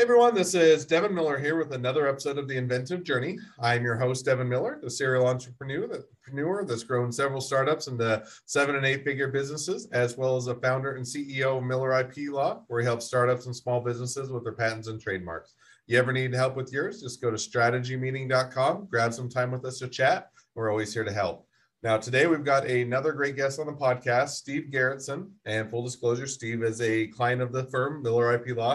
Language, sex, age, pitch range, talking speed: English, male, 30-49, 120-140 Hz, 215 wpm